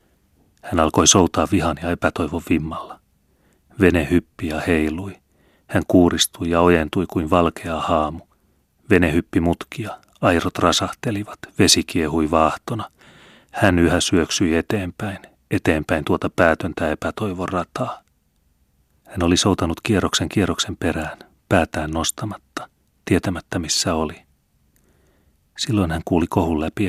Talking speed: 115 wpm